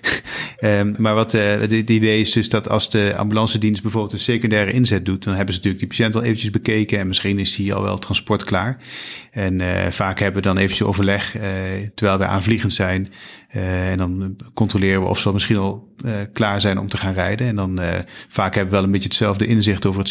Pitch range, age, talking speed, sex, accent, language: 95-110 Hz, 30-49, 235 wpm, male, Dutch, Dutch